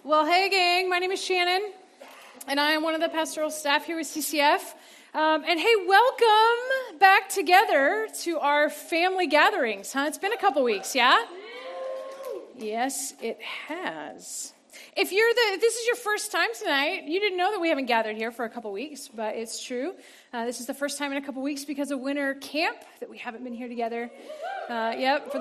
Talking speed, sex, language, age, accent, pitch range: 205 wpm, female, English, 30-49, American, 265-370 Hz